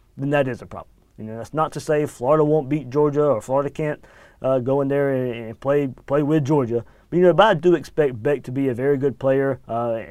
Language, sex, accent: English, male, American